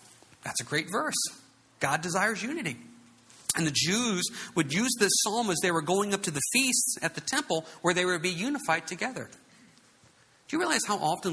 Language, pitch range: English, 130-195 Hz